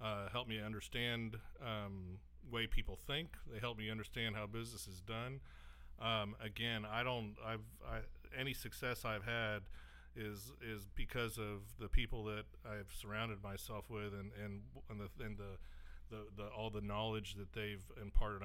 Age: 40-59